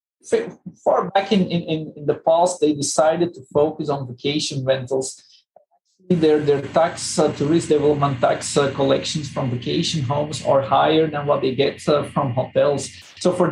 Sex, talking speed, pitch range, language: male, 160 wpm, 140-160 Hz, English